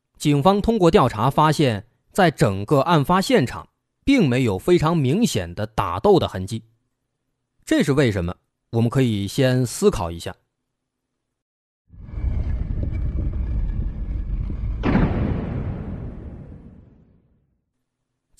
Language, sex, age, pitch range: Chinese, male, 30-49, 110-165 Hz